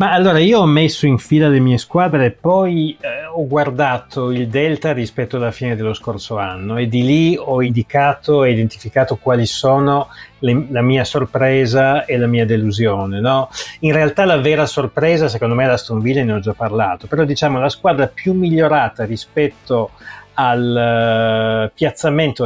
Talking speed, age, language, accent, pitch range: 170 wpm, 30-49, Italian, native, 115-150 Hz